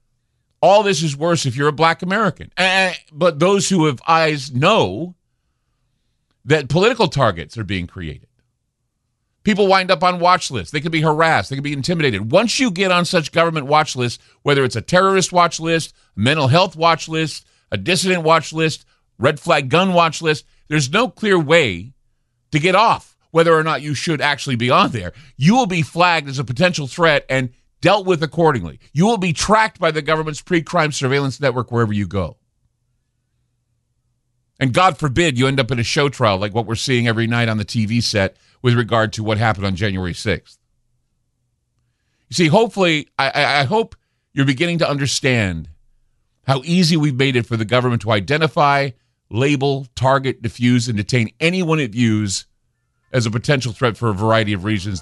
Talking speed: 185 wpm